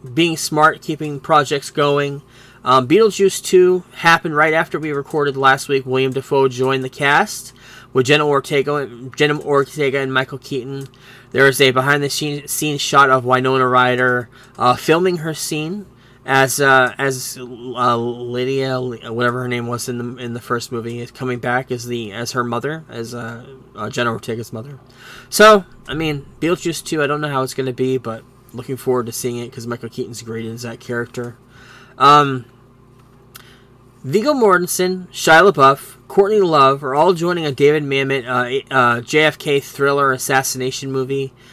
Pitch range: 125-145 Hz